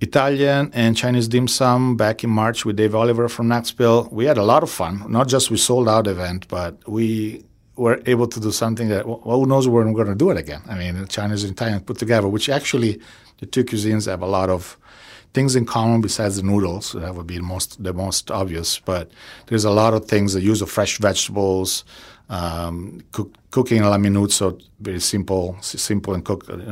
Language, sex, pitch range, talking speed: English, male, 95-120 Hz, 215 wpm